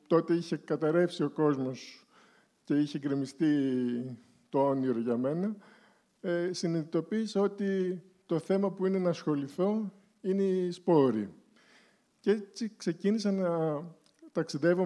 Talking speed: 115 wpm